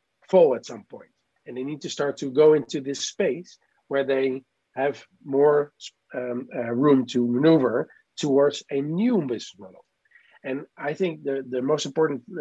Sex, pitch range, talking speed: male, 125-170 Hz, 170 wpm